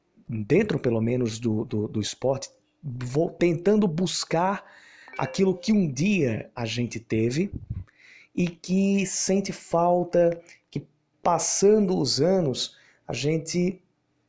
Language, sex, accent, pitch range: Portuguese, male, Brazilian, 125-175 Hz